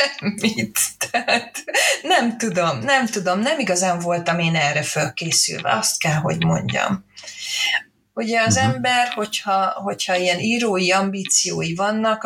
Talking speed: 120 wpm